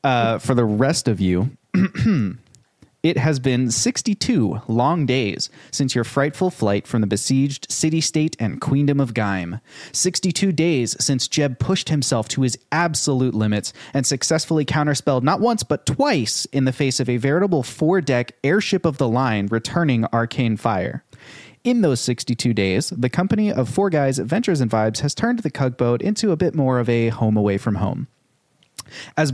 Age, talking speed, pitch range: 30-49, 170 wpm, 120-155 Hz